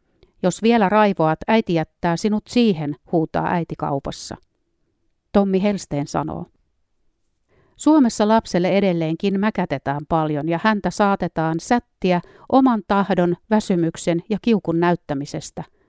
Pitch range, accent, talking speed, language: 165-215 Hz, native, 105 wpm, Finnish